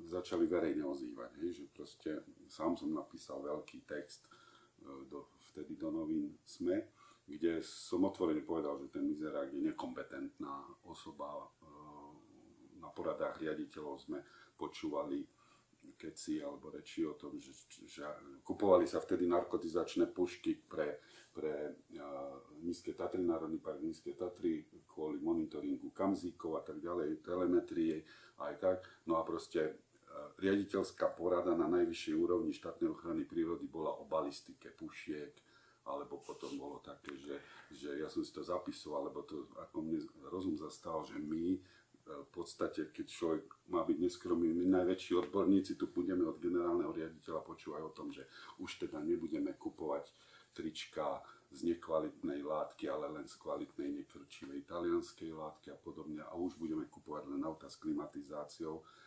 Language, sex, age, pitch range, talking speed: Slovak, male, 40-59, 300-335 Hz, 145 wpm